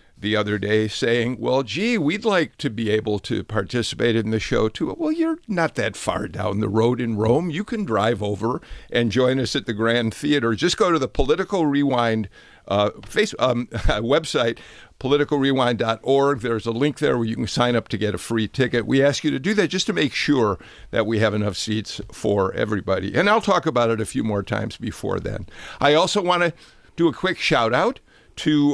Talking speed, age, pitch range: 205 wpm, 50-69, 110-150 Hz